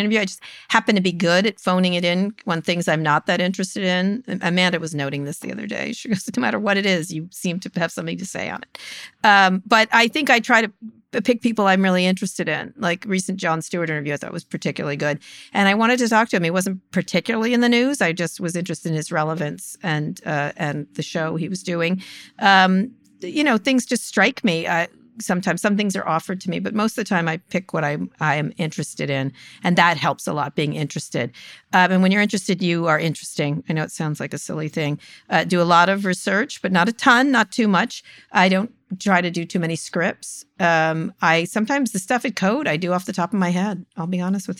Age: 50-69